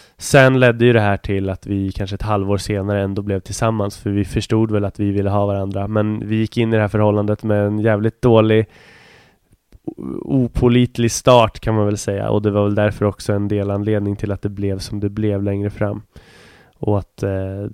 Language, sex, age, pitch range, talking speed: English, male, 20-39, 100-115 Hz, 215 wpm